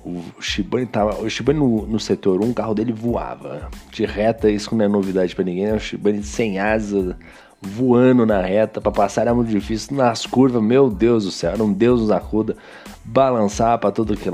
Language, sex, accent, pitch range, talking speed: Portuguese, male, Brazilian, 100-120 Hz, 205 wpm